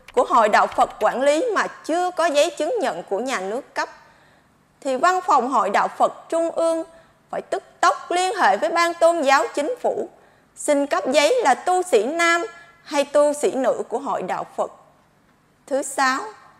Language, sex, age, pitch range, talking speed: Vietnamese, female, 20-39, 260-335 Hz, 190 wpm